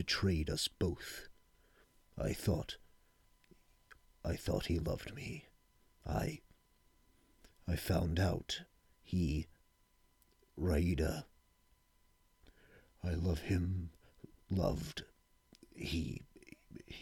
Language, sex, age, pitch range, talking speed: English, male, 50-69, 85-125 Hz, 75 wpm